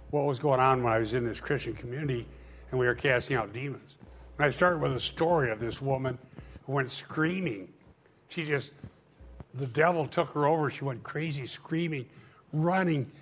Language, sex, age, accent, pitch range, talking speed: English, male, 60-79, American, 120-160 Hz, 185 wpm